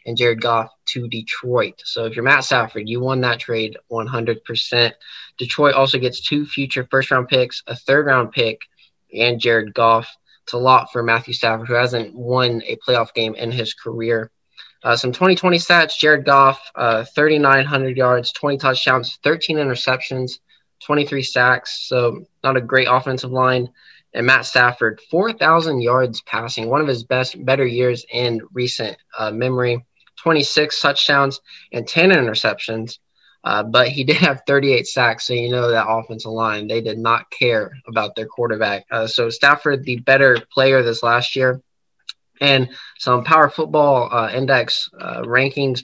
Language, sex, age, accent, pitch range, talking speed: English, male, 20-39, American, 115-140 Hz, 160 wpm